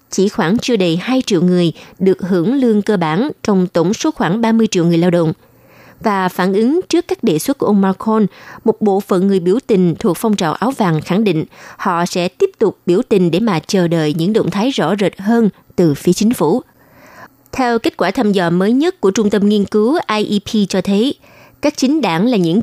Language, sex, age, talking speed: Vietnamese, female, 20-39, 225 wpm